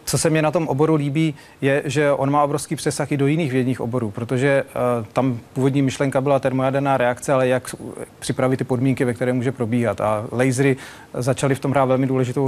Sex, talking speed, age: male, 205 wpm, 40-59